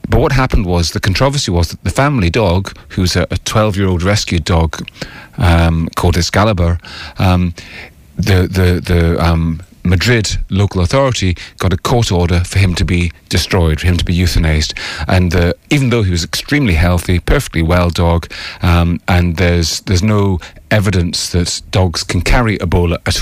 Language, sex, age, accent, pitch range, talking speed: English, male, 30-49, British, 85-105 Hz, 165 wpm